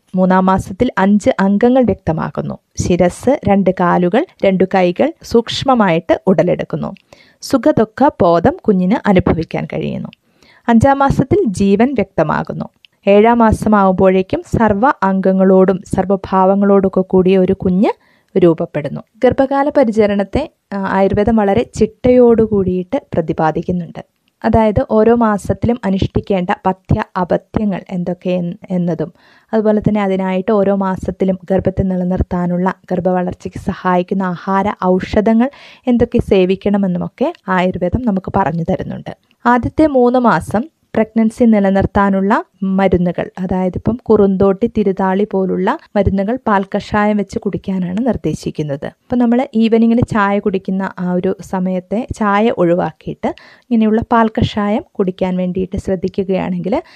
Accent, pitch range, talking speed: native, 185-225 Hz, 95 wpm